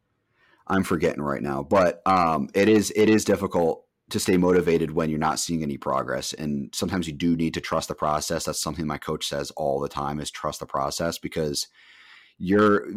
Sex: male